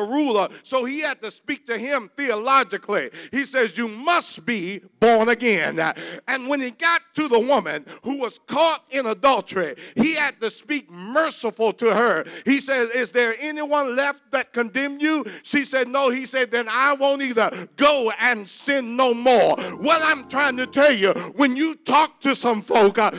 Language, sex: English, male